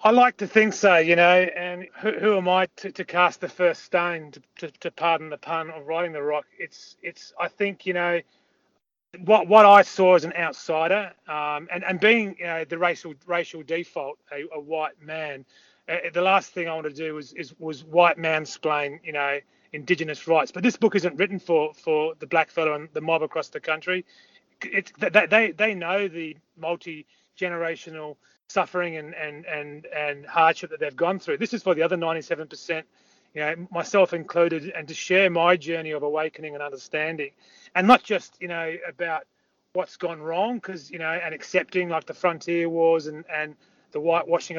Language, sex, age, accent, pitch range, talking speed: English, male, 30-49, Australian, 155-185 Hz, 200 wpm